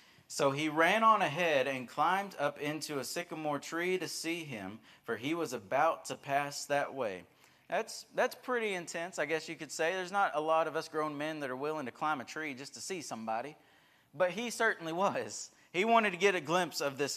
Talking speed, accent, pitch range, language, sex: 220 wpm, American, 125-165 Hz, English, male